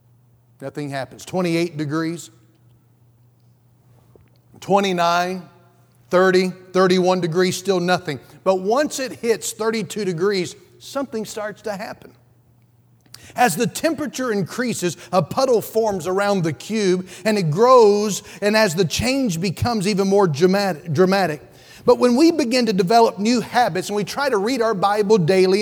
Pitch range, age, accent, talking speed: 175-230 Hz, 40-59, American, 135 wpm